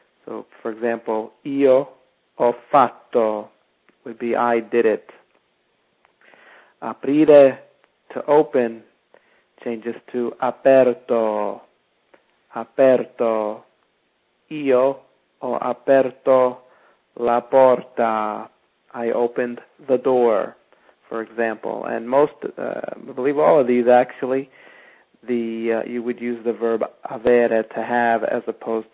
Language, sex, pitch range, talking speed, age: English, male, 115-125 Hz, 100 wpm, 50-69